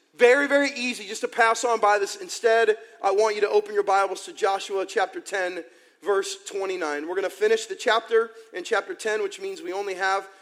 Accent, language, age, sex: American, English, 40-59, male